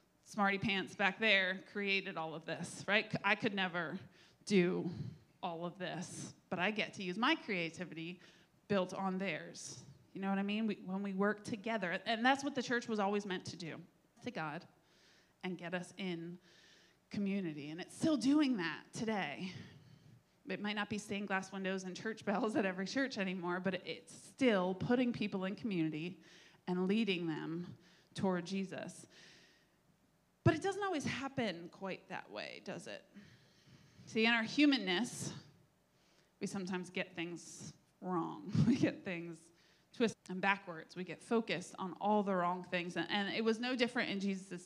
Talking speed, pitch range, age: 165 wpm, 175-210 Hz, 20-39